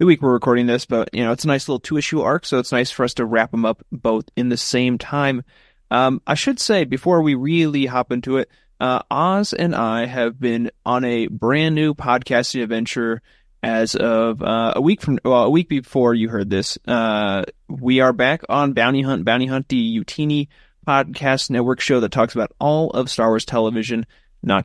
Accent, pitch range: American, 115-140 Hz